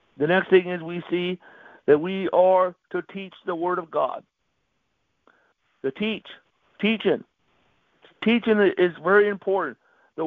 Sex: male